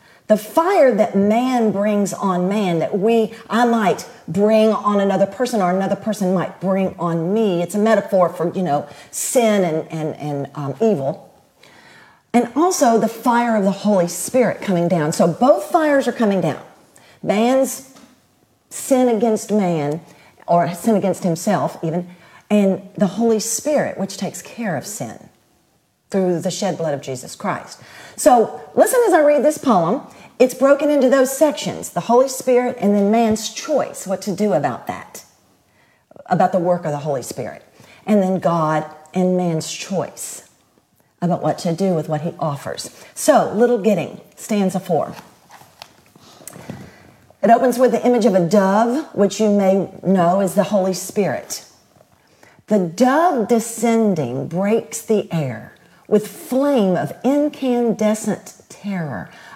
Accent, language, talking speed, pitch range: American, English, 155 wpm, 180-235 Hz